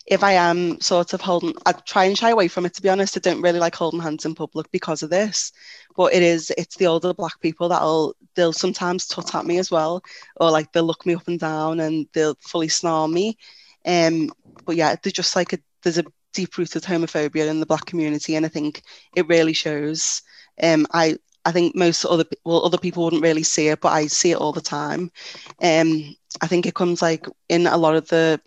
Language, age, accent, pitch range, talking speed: English, 20-39, British, 155-175 Hz, 225 wpm